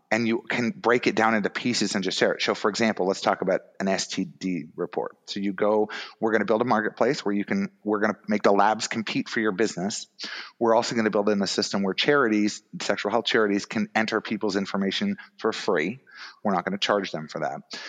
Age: 30-49